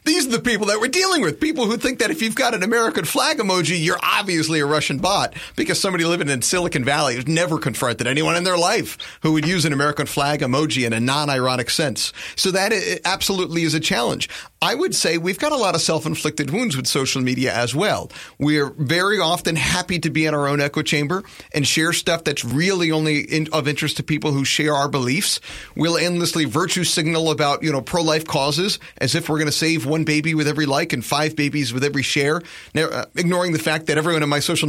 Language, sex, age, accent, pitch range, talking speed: English, male, 40-59, American, 145-175 Hz, 225 wpm